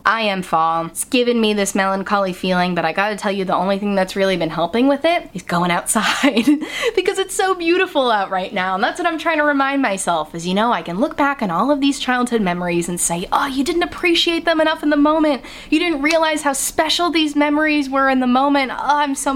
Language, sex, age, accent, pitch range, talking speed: English, female, 10-29, American, 185-280 Hz, 245 wpm